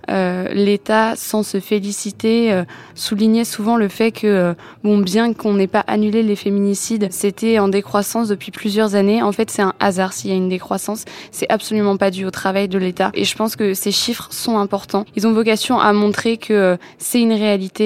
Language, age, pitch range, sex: French, 20-39, 195-220 Hz, female